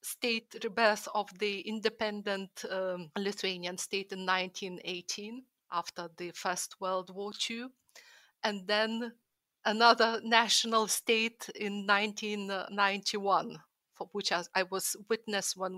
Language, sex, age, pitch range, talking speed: Hebrew, female, 30-49, 195-245 Hz, 110 wpm